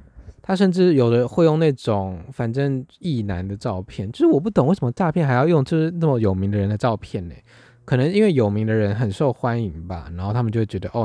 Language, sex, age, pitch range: Chinese, male, 20-39, 100-135 Hz